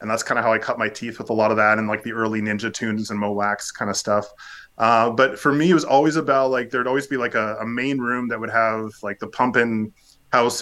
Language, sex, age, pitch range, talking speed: English, male, 20-39, 110-120 Hz, 285 wpm